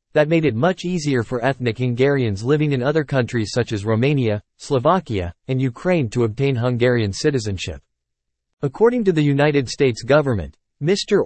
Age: 40-59